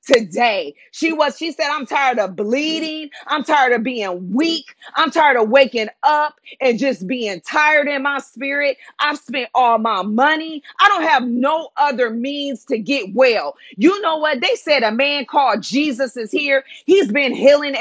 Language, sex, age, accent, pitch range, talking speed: English, female, 40-59, American, 245-305 Hz, 180 wpm